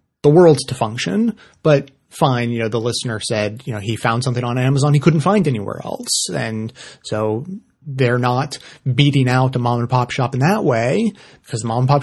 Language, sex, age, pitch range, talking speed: English, male, 30-49, 125-145 Hz, 185 wpm